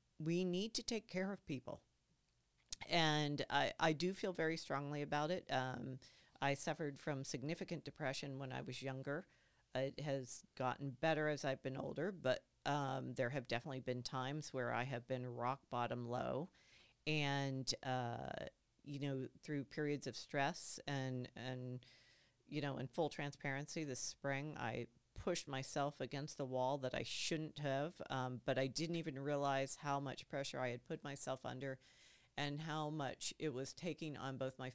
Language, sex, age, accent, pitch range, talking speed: English, female, 40-59, American, 130-150 Hz, 170 wpm